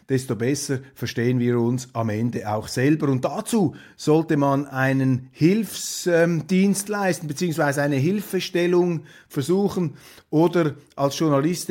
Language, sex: German, male